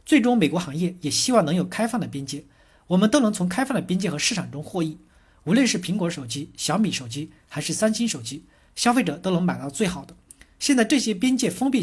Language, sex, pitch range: Chinese, male, 145-220 Hz